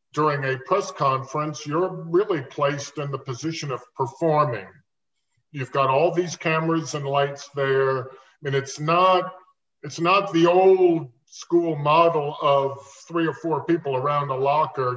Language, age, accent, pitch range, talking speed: English, 50-69, American, 135-170 Hz, 150 wpm